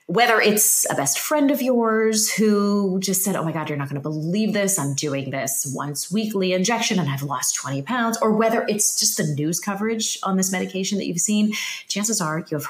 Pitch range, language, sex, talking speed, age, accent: 155-210 Hz, English, female, 220 wpm, 30-49, American